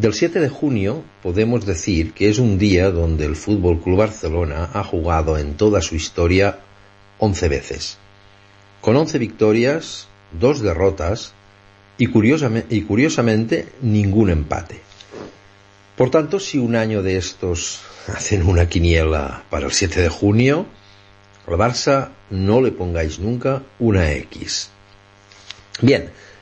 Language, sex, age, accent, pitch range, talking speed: Spanish, male, 60-79, Spanish, 100-120 Hz, 130 wpm